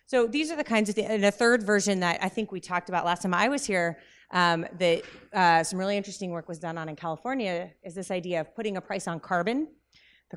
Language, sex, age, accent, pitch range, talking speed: English, female, 30-49, American, 165-200 Hz, 255 wpm